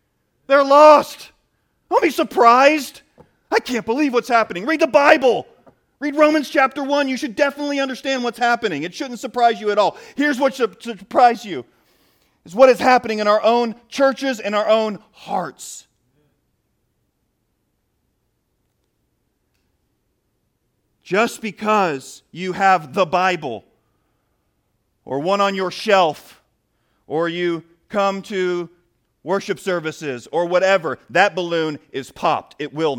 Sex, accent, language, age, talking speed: male, American, English, 40-59, 130 wpm